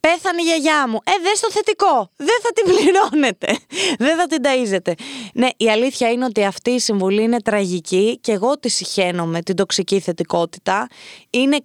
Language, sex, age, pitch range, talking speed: Greek, female, 20-39, 220-325 Hz, 180 wpm